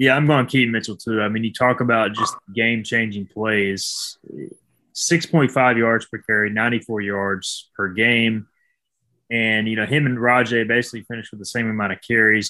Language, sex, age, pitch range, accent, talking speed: English, male, 20-39, 105-120 Hz, American, 180 wpm